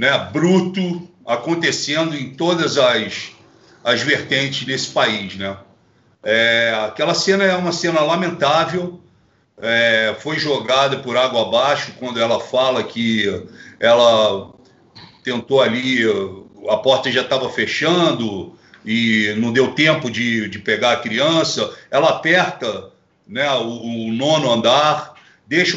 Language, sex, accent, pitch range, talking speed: Portuguese, male, Brazilian, 125-180 Hz, 125 wpm